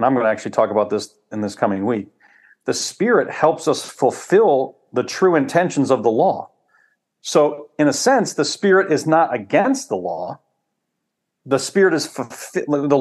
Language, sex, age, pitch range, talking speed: English, male, 40-59, 115-155 Hz, 180 wpm